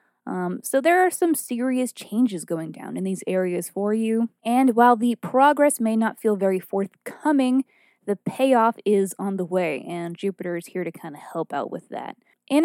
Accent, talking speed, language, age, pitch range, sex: American, 195 wpm, English, 20-39, 185-240 Hz, female